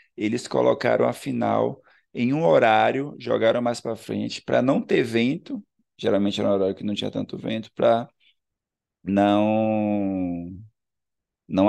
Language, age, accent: Portuguese, 20-39, Brazilian